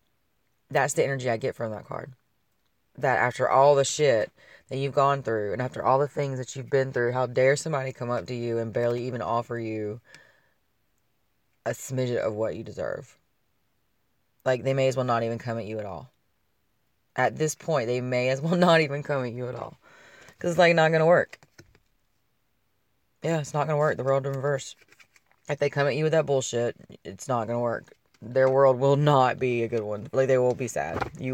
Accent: American